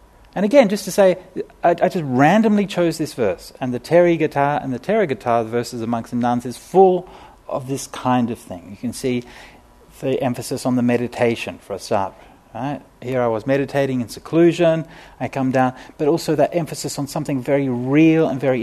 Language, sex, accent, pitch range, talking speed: English, male, Australian, 120-175 Hz, 205 wpm